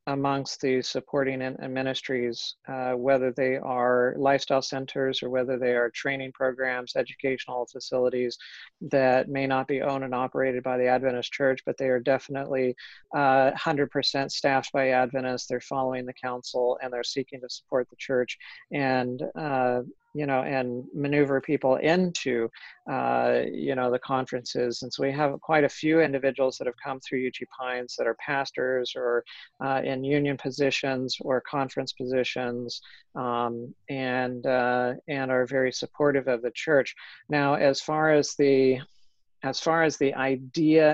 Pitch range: 125-140 Hz